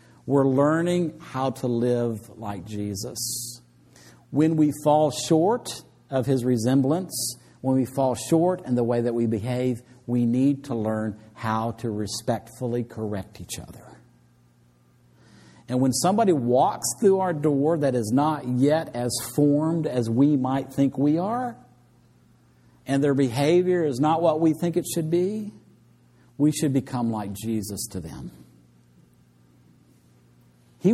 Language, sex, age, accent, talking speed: English, male, 50-69, American, 140 wpm